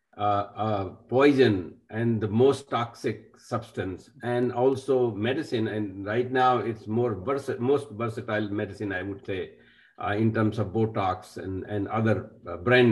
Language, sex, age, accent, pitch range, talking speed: English, male, 50-69, Indian, 105-130 Hz, 160 wpm